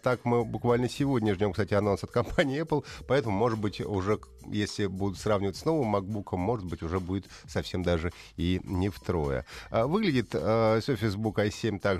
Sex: male